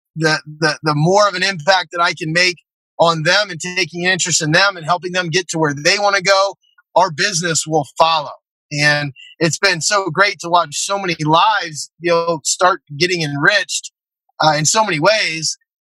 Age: 30-49